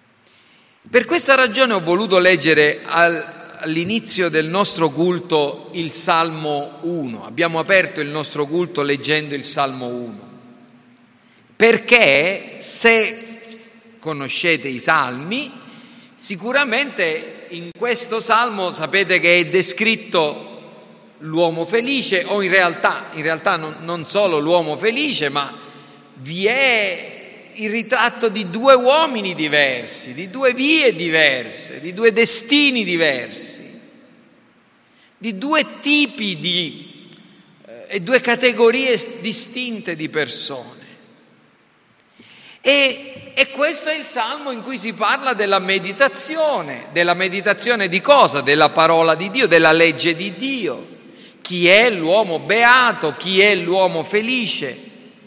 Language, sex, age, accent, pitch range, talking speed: Italian, male, 40-59, native, 165-245 Hz, 115 wpm